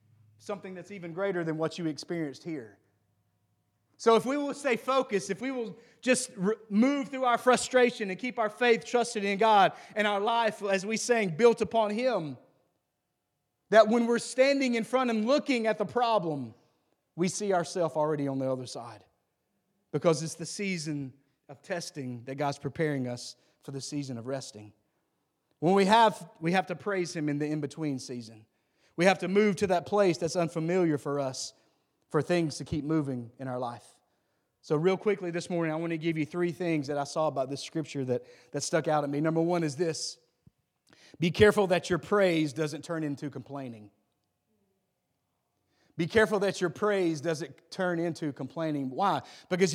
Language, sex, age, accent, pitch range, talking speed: English, male, 30-49, American, 145-205 Hz, 185 wpm